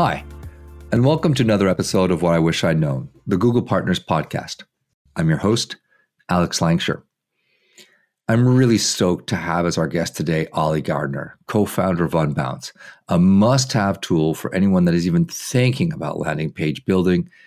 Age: 50-69